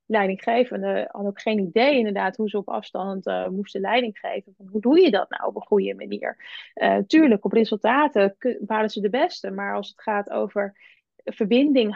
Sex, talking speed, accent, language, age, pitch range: female, 185 wpm, Dutch, Dutch, 20-39, 200-225 Hz